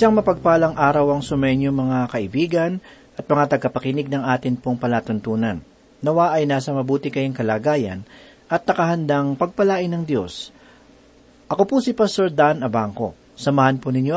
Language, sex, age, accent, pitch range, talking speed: Filipino, male, 50-69, native, 125-180 Hz, 145 wpm